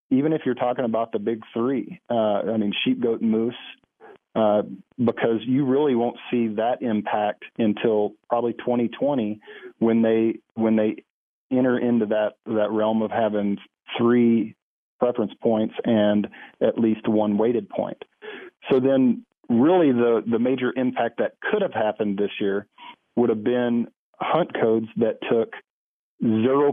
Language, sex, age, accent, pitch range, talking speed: English, male, 40-59, American, 110-120 Hz, 150 wpm